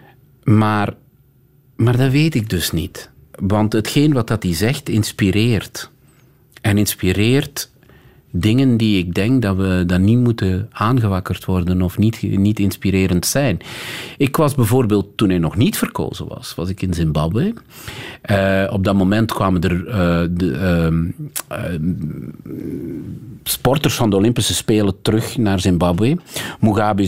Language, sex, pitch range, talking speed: Dutch, male, 90-120 Hz, 140 wpm